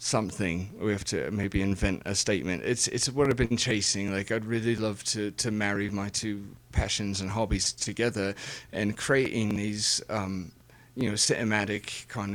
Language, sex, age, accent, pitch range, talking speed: English, male, 30-49, British, 100-110 Hz, 170 wpm